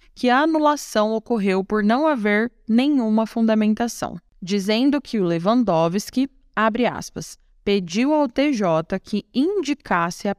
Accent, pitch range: Brazilian, 200-255 Hz